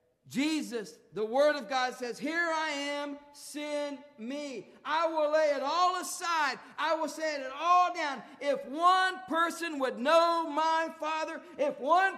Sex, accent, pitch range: male, American, 195-315 Hz